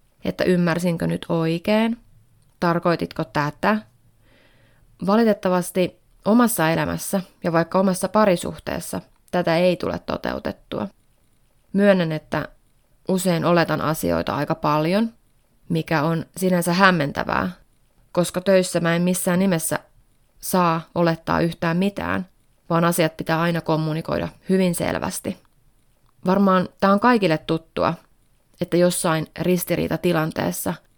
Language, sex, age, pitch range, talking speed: Finnish, female, 20-39, 155-190 Hz, 105 wpm